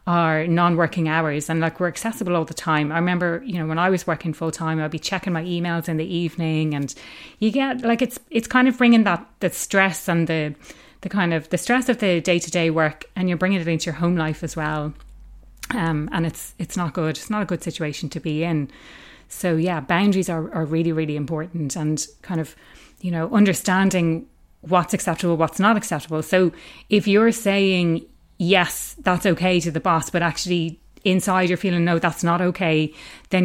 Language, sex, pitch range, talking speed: English, female, 160-195 Hz, 205 wpm